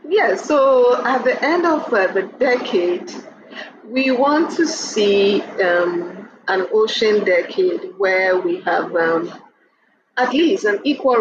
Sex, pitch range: female, 180-260 Hz